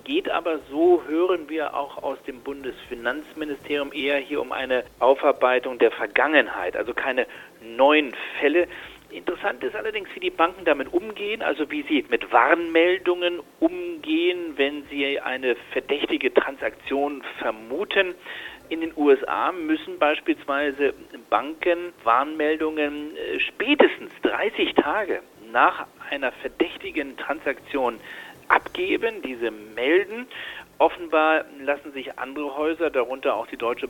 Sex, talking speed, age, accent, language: male, 115 wpm, 40-59, German, German